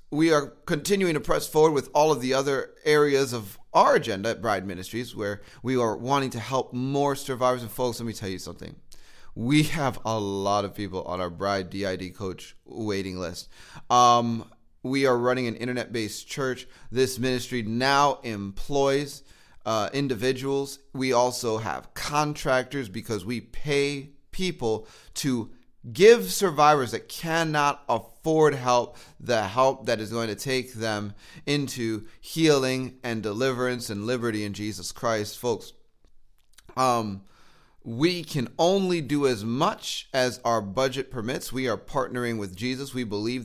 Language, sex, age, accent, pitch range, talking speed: English, male, 30-49, American, 110-140 Hz, 150 wpm